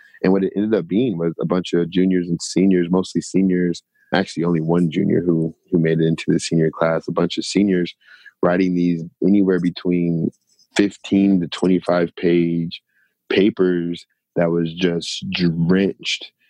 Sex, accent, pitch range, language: male, American, 85-95 Hz, English